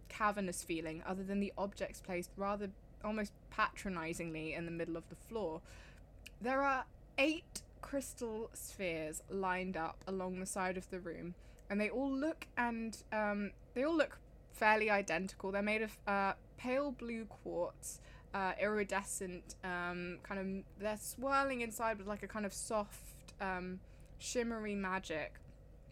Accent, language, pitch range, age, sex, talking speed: British, English, 185-220 Hz, 20-39, female, 150 wpm